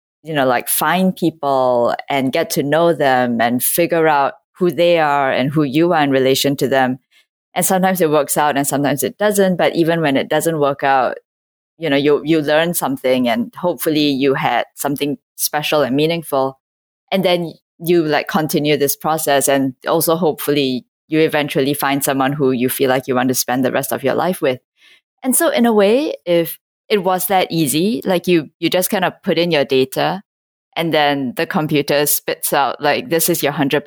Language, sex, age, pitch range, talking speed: English, female, 10-29, 140-180 Hz, 200 wpm